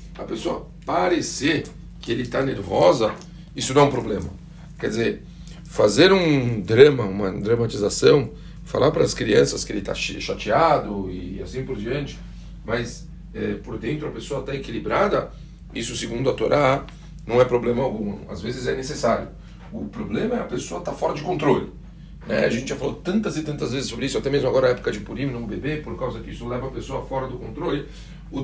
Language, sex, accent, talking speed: Portuguese, male, Brazilian, 195 wpm